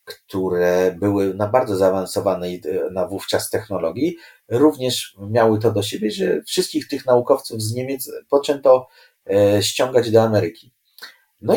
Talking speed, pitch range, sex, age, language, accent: 125 wpm, 100-140 Hz, male, 40-59, Polish, native